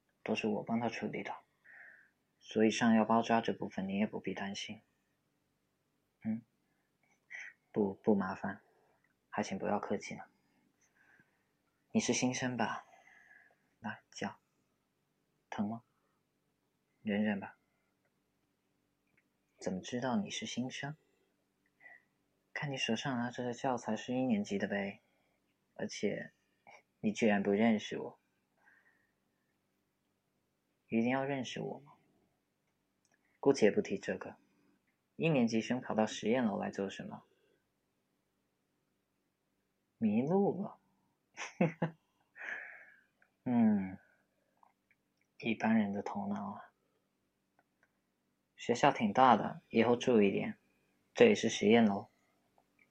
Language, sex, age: Chinese, male, 20-39